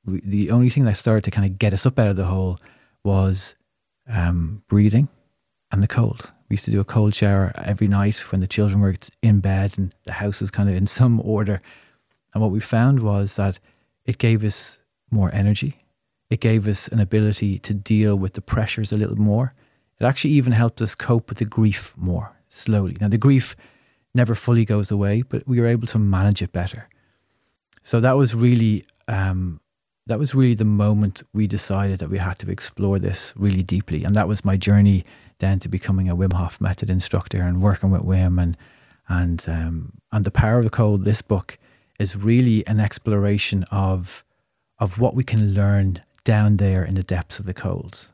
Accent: Irish